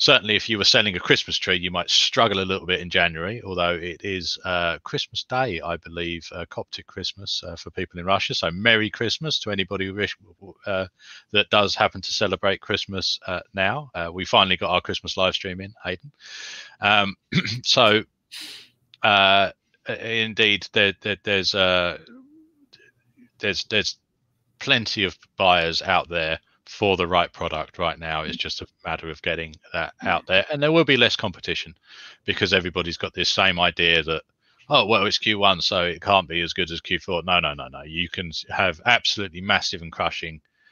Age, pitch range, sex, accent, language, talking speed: 30-49, 85-115 Hz, male, British, English, 185 wpm